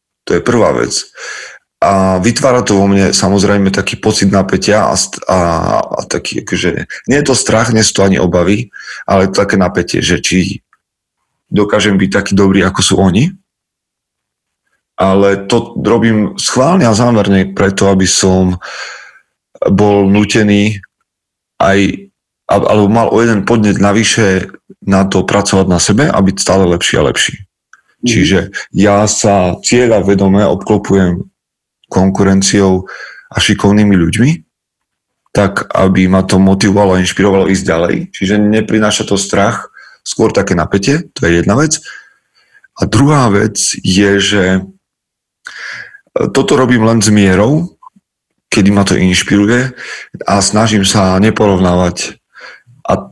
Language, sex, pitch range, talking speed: Slovak, male, 95-105 Hz, 130 wpm